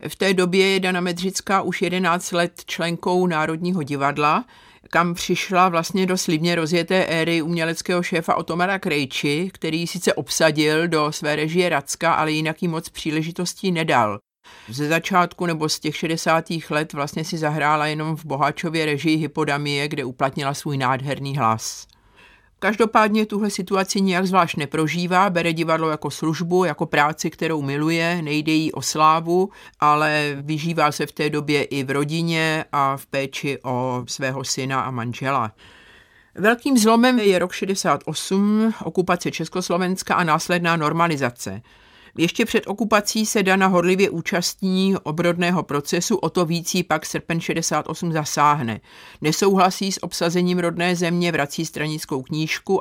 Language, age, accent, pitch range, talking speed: Czech, 50-69, native, 150-180 Hz, 140 wpm